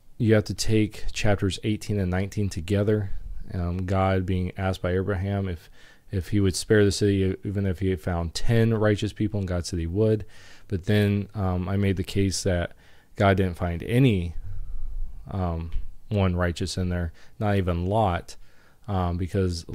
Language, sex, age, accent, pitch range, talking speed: English, male, 20-39, American, 90-105 Hz, 175 wpm